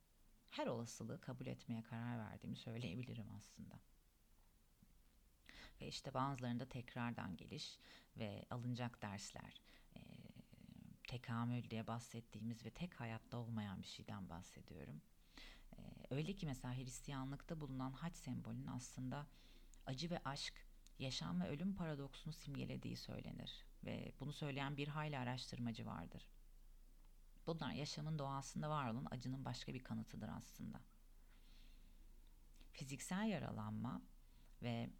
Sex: female